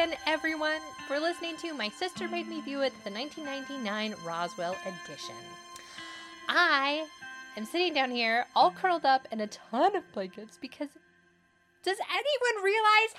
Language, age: English, 20-39